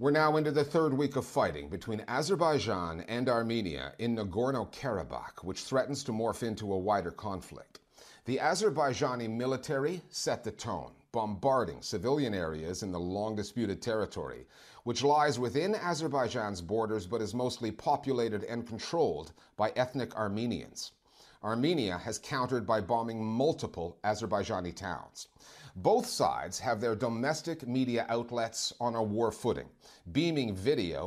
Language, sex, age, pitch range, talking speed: English, male, 40-59, 105-135 Hz, 135 wpm